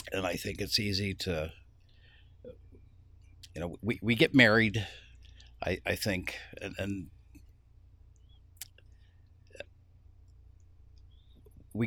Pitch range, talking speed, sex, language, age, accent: 90-105 Hz, 90 wpm, male, English, 60-79, American